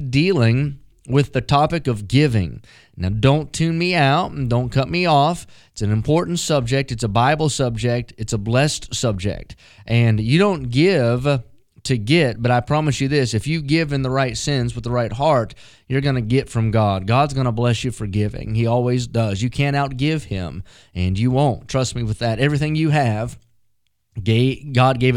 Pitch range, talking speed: 115-135 Hz, 195 wpm